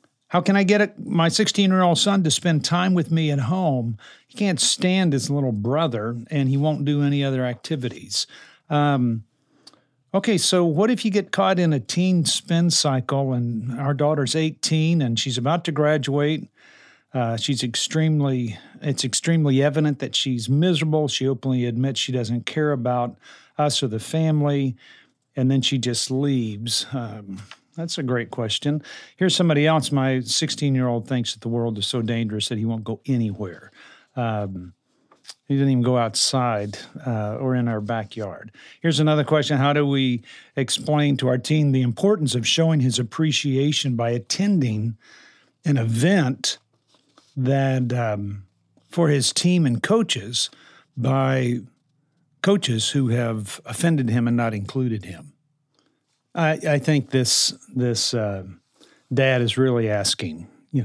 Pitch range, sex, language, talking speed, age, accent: 120-155 Hz, male, English, 155 wpm, 50-69, American